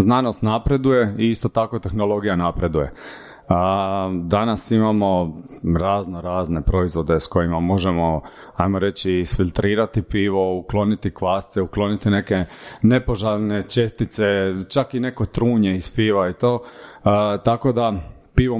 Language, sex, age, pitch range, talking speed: Croatian, male, 30-49, 95-115 Hz, 125 wpm